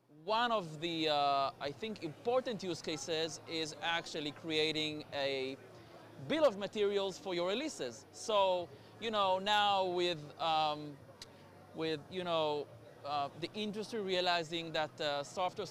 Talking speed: 135 wpm